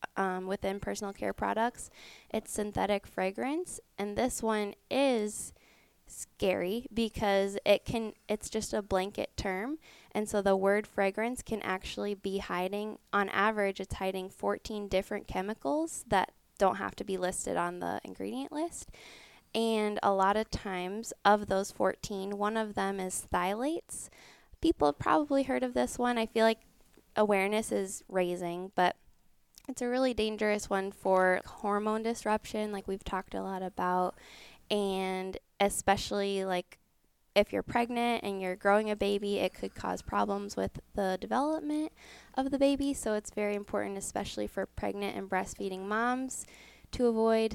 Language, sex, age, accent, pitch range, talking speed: English, female, 10-29, American, 190-220 Hz, 155 wpm